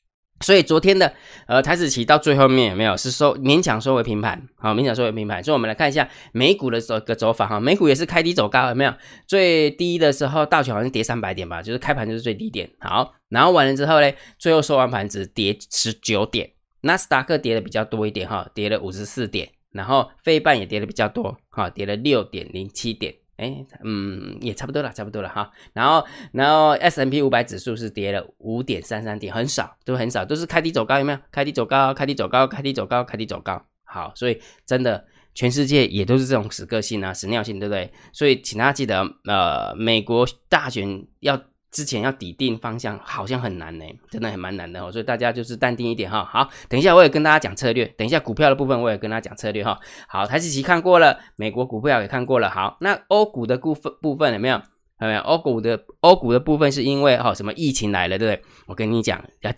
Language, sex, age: Chinese, male, 20-39